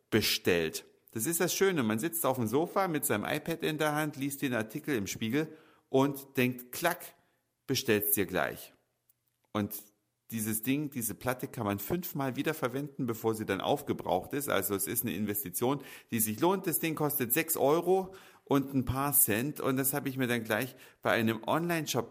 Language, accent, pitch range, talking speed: German, German, 105-150 Hz, 185 wpm